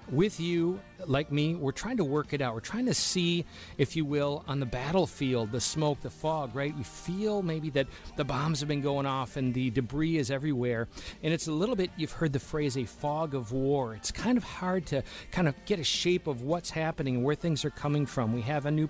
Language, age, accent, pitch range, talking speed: English, 40-59, American, 130-160 Hz, 240 wpm